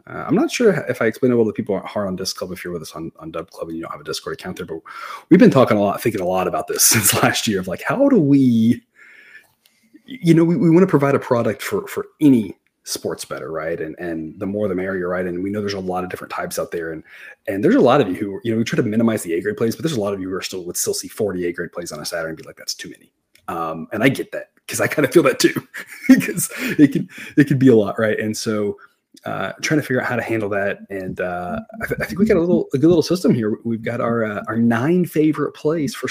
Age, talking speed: 30-49, 305 wpm